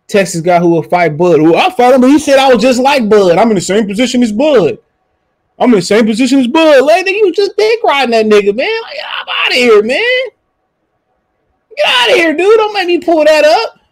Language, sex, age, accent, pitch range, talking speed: English, male, 20-39, American, 175-265 Hz, 250 wpm